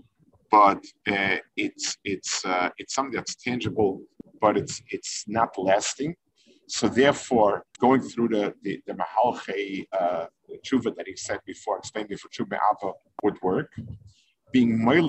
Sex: male